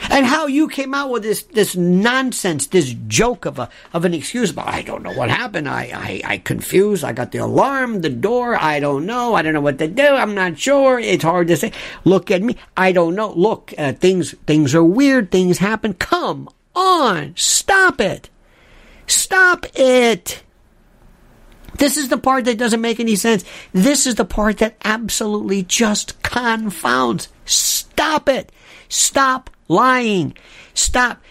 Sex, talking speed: male, 175 wpm